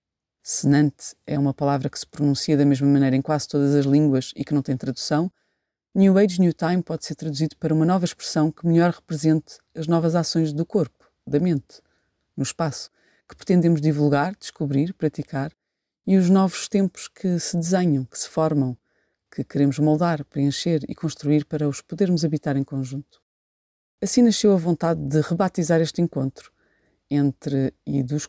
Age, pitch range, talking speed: 30-49, 140-170 Hz, 170 wpm